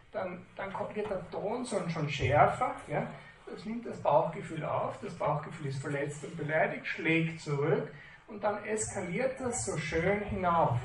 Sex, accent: male, German